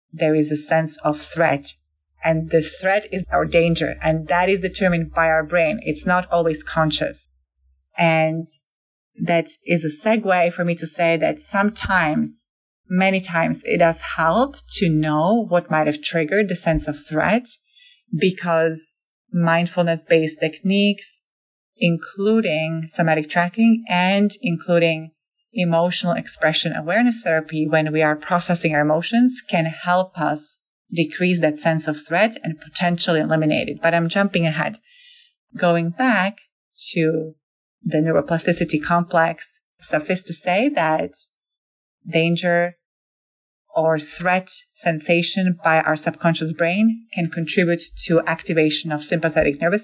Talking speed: 130 wpm